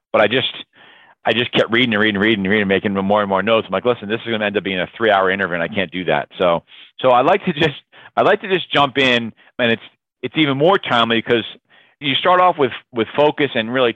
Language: English